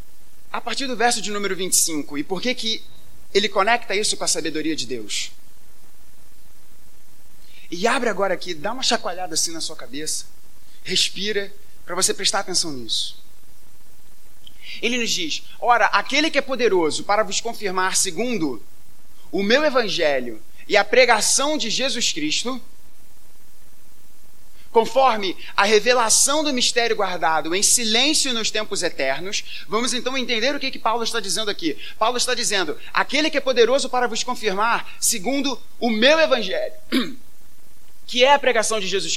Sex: male